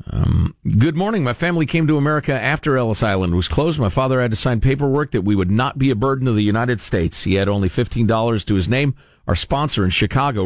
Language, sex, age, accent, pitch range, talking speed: English, male, 50-69, American, 110-150 Hz, 240 wpm